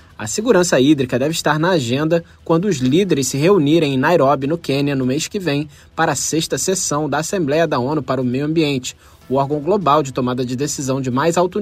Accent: Brazilian